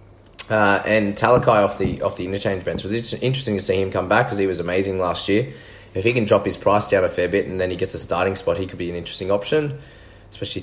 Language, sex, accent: English, male, Australian